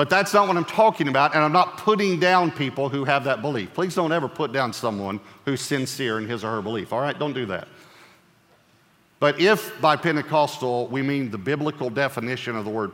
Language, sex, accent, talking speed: English, male, American, 220 wpm